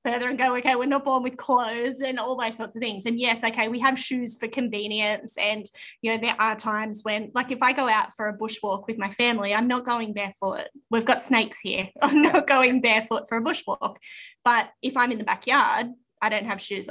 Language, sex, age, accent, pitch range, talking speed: English, female, 20-39, Australian, 215-255 Hz, 235 wpm